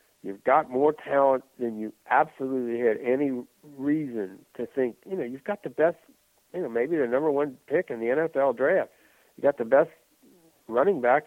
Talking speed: 185 wpm